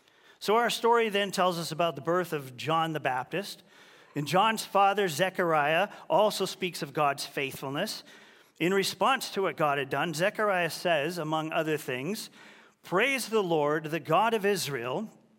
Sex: male